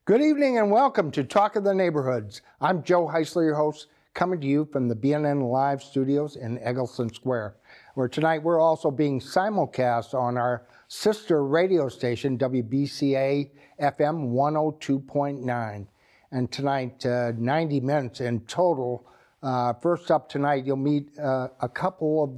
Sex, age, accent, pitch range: male, 60-79, American, 120-150 Hz